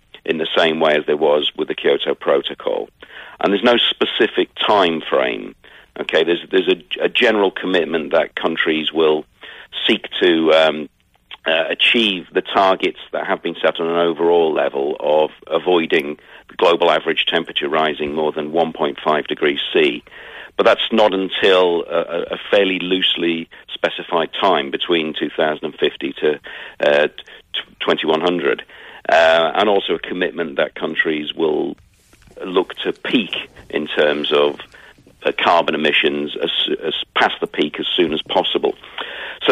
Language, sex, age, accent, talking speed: English, male, 50-69, British, 145 wpm